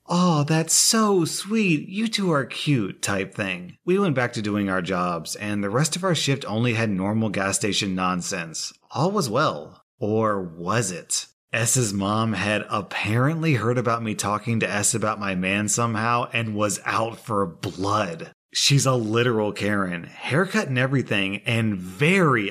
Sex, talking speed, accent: male, 170 wpm, American